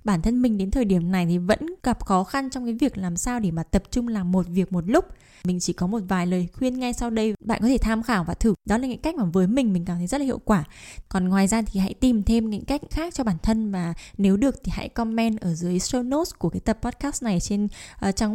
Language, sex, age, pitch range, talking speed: Vietnamese, female, 10-29, 180-235 Hz, 285 wpm